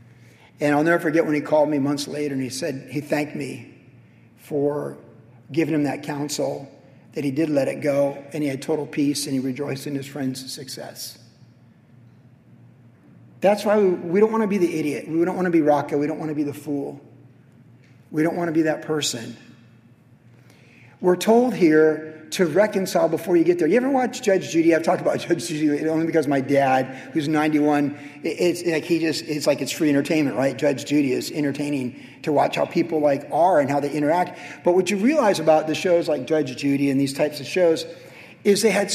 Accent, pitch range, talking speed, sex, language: American, 140-175 Hz, 210 wpm, male, English